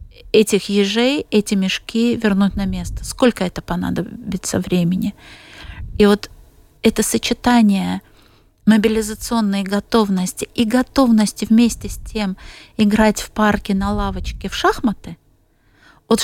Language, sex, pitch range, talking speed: Ukrainian, female, 190-230 Hz, 110 wpm